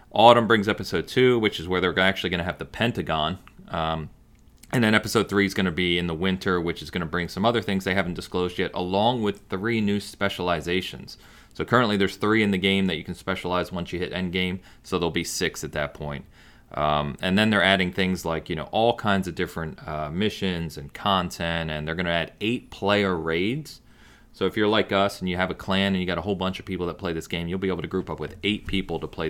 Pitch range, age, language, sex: 80-100 Hz, 30-49, English, male